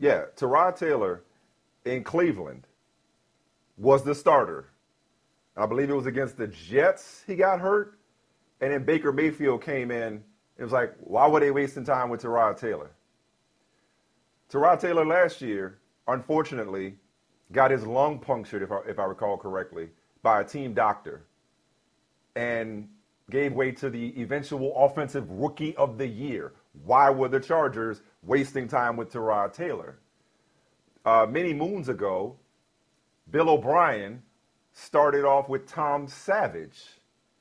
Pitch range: 120-150 Hz